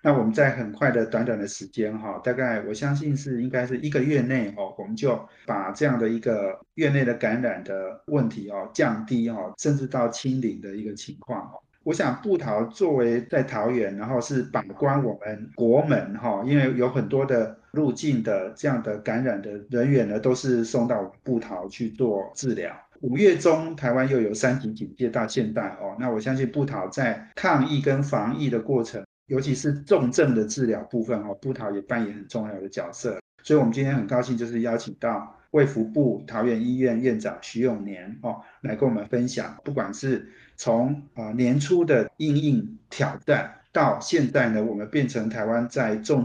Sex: male